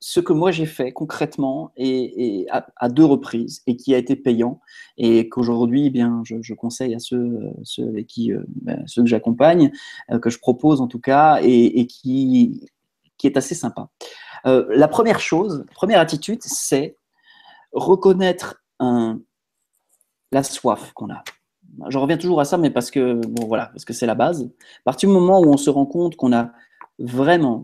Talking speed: 185 wpm